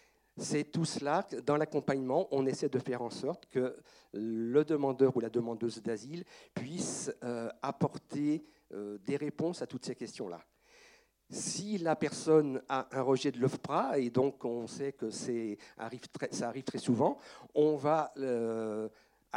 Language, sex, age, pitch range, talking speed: French, male, 50-69, 130-155 Hz, 160 wpm